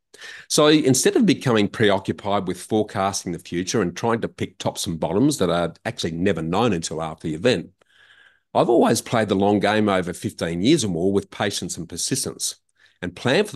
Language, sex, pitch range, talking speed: English, male, 90-115 Hz, 190 wpm